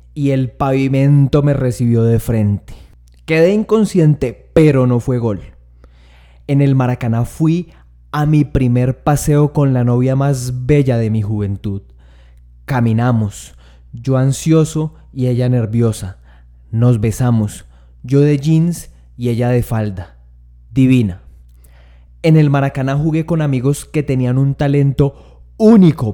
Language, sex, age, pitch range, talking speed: Spanish, male, 20-39, 105-145 Hz, 130 wpm